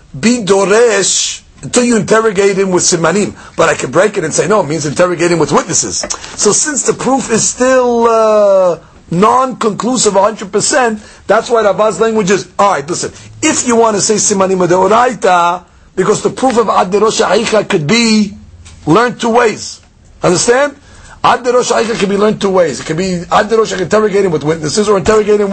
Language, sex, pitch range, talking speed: English, male, 155-220 Hz, 175 wpm